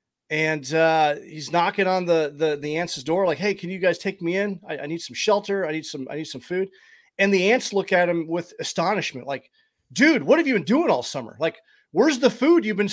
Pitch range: 150-215 Hz